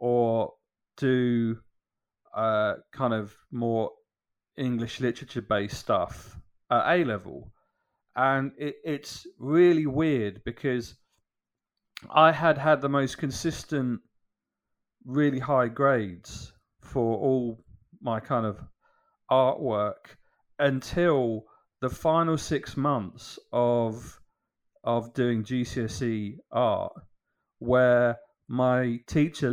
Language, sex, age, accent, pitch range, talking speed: English, male, 40-59, British, 110-140 Hz, 90 wpm